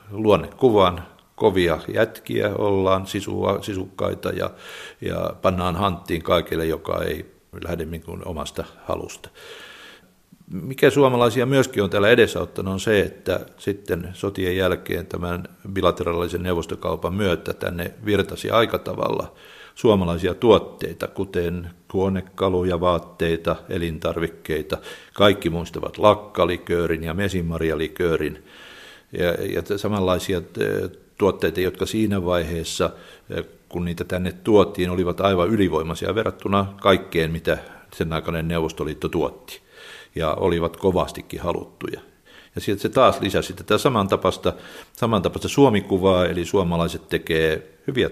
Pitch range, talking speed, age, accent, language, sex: 85-100 Hz, 110 wpm, 50-69, native, Finnish, male